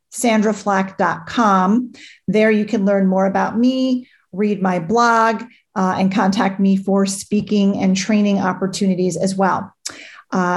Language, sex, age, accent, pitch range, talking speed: English, female, 40-59, American, 195-230 Hz, 130 wpm